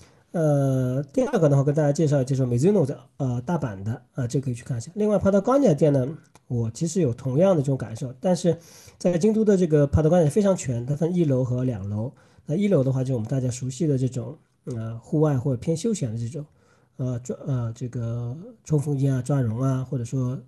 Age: 40-59